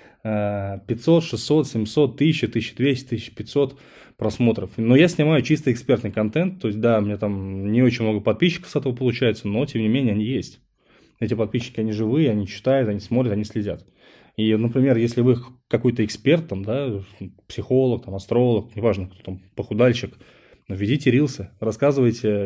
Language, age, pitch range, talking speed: Russian, 20-39, 110-135 Hz, 160 wpm